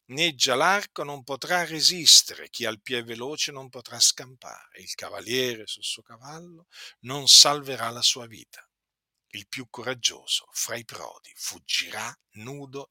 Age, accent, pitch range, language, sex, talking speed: 50-69, native, 115-155 Hz, Italian, male, 140 wpm